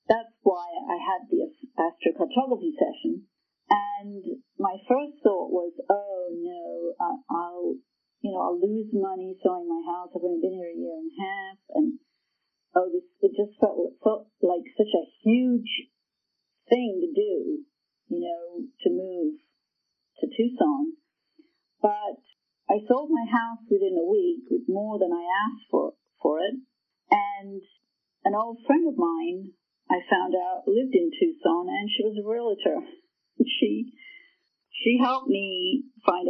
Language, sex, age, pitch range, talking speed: English, female, 40-59, 195-325 Hz, 150 wpm